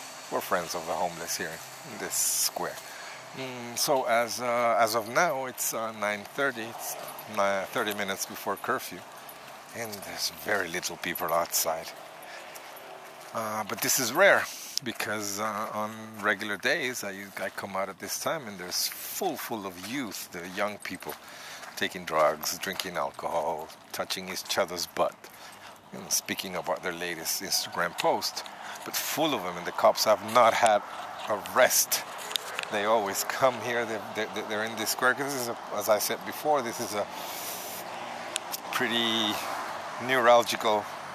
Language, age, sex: English, 50-69, male